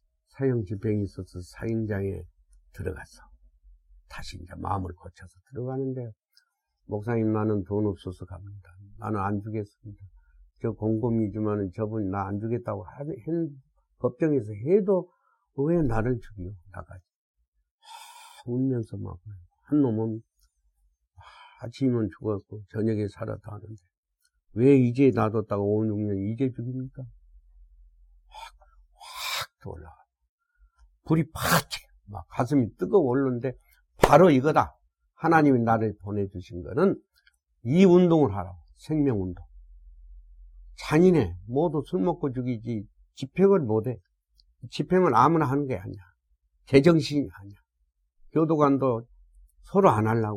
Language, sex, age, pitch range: Korean, male, 50-69, 90-130 Hz